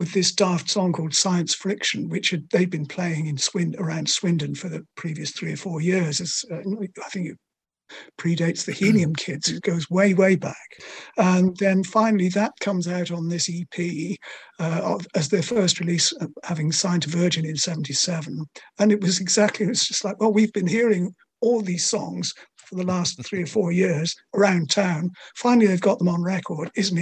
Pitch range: 170-205 Hz